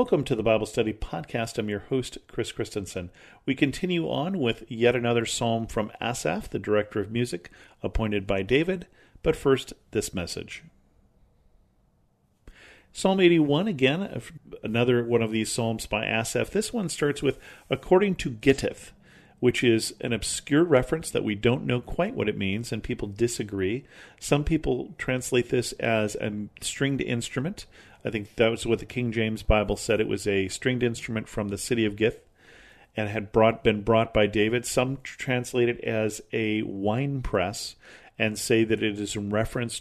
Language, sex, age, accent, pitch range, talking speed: English, male, 40-59, American, 105-125 Hz, 170 wpm